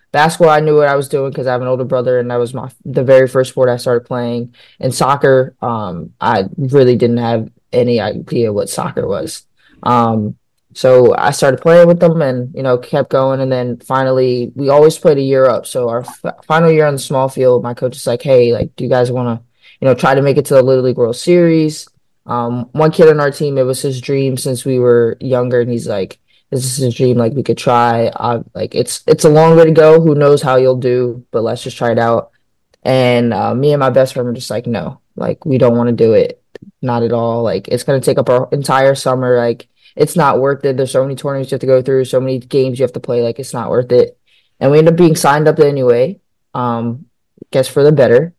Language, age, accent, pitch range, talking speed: English, 20-39, American, 120-140 Hz, 250 wpm